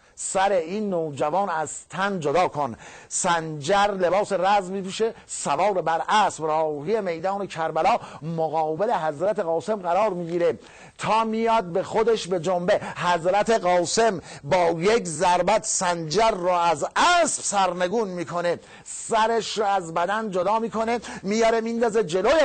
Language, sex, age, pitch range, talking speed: English, male, 50-69, 165-205 Hz, 130 wpm